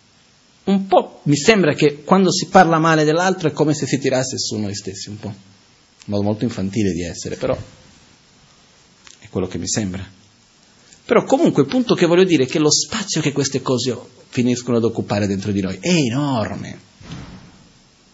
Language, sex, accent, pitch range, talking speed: Italian, male, native, 100-130 Hz, 180 wpm